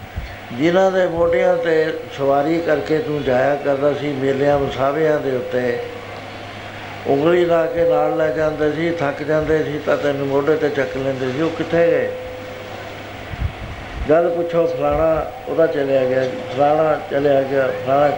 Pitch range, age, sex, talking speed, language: 110-150 Hz, 60-79, male, 150 wpm, Punjabi